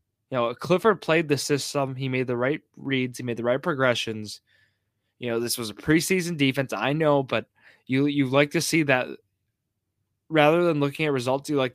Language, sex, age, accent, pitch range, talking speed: English, male, 20-39, American, 110-140 Hz, 200 wpm